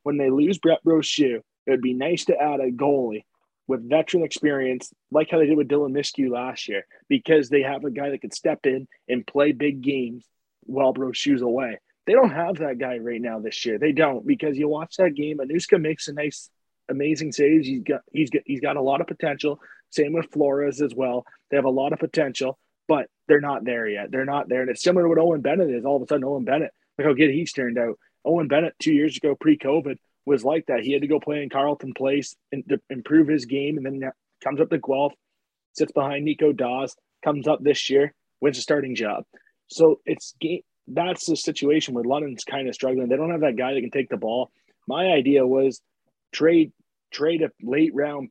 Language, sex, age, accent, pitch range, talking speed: English, male, 20-39, American, 130-155 Hz, 225 wpm